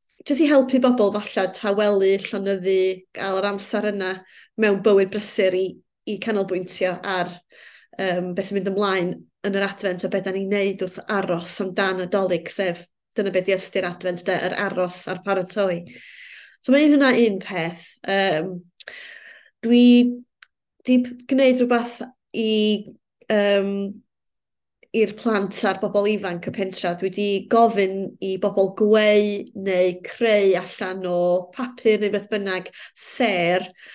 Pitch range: 190-220 Hz